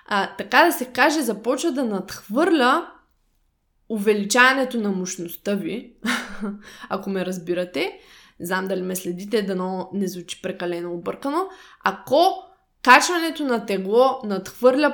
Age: 20-39